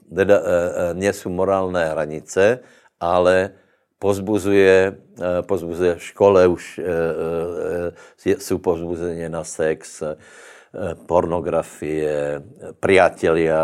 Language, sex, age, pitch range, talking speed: Slovak, male, 60-79, 90-105 Hz, 105 wpm